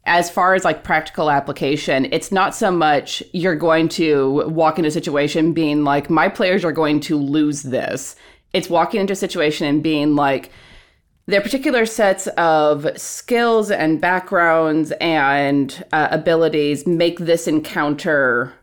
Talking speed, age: 150 wpm, 30-49